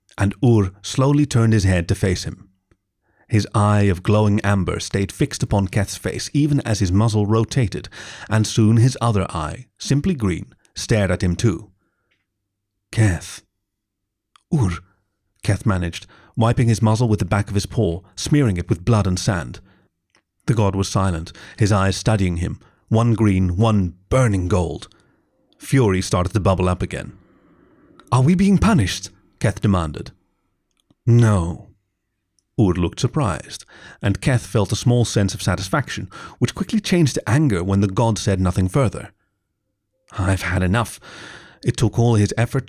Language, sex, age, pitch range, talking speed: English, male, 40-59, 95-115 Hz, 155 wpm